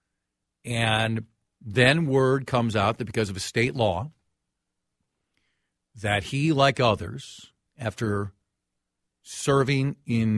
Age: 50-69